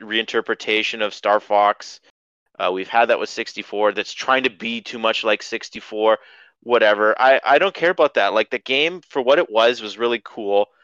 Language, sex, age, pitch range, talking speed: English, male, 30-49, 105-135 Hz, 195 wpm